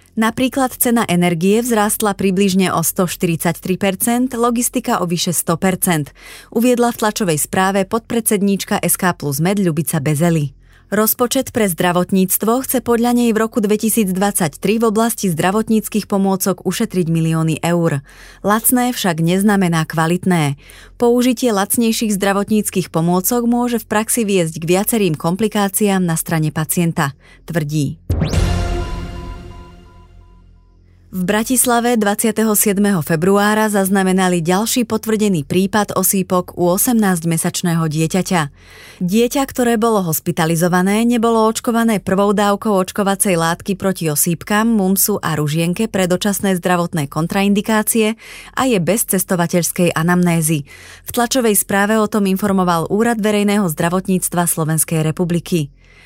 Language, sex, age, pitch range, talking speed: Slovak, female, 30-49, 170-220 Hz, 110 wpm